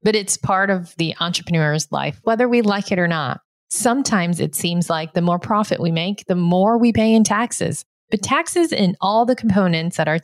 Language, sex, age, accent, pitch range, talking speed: English, female, 30-49, American, 160-205 Hz, 210 wpm